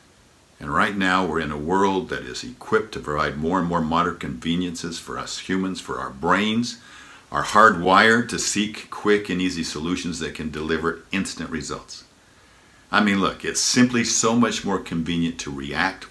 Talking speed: 175 wpm